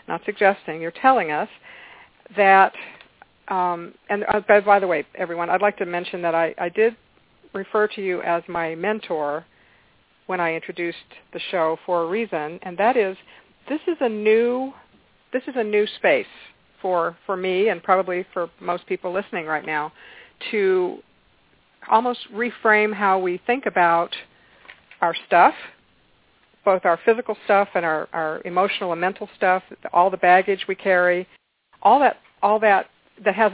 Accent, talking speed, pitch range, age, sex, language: American, 165 wpm, 175-210 Hz, 50-69, female, English